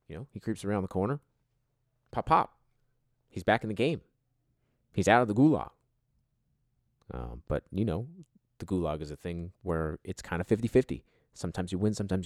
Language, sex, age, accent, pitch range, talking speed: English, male, 30-49, American, 85-125 Hz, 180 wpm